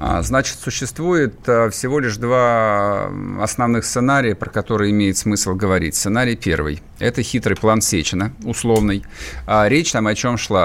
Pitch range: 100-125 Hz